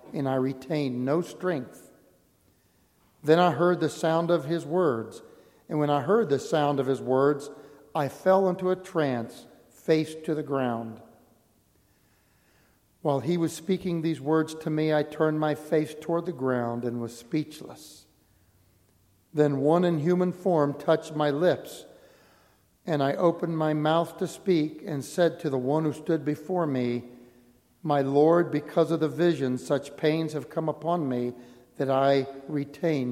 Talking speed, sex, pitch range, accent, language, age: 160 wpm, male, 125-160 Hz, American, English, 60-79